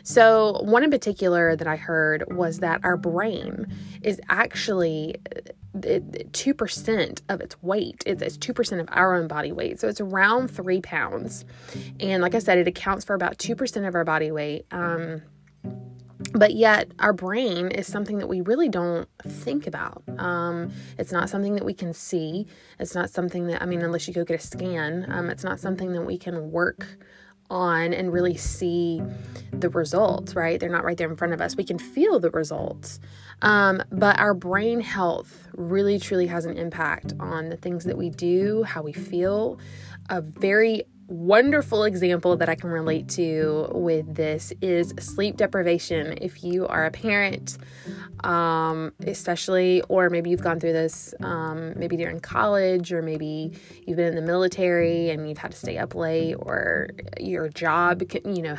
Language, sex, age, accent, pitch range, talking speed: English, female, 20-39, American, 165-190 Hz, 180 wpm